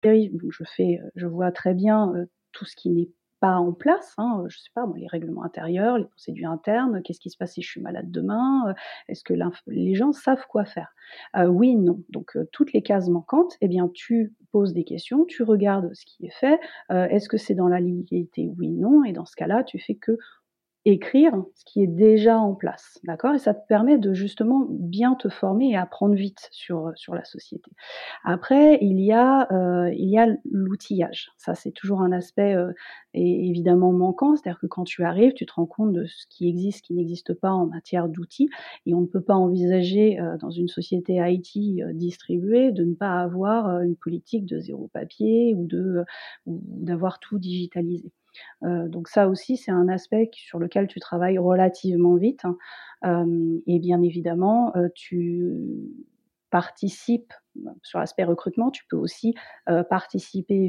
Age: 40-59